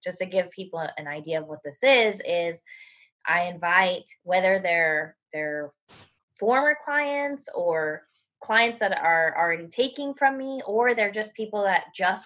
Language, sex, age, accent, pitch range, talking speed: English, female, 20-39, American, 165-230 Hz, 155 wpm